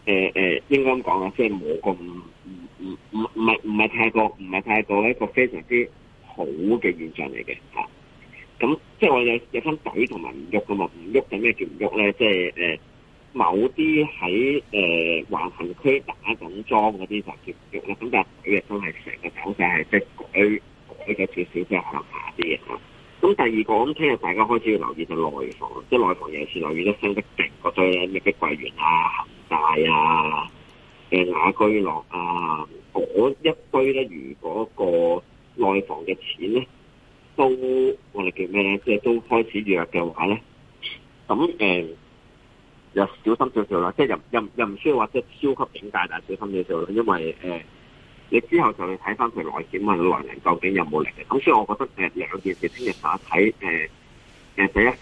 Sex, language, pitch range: male, Chinese, 95-135 Hz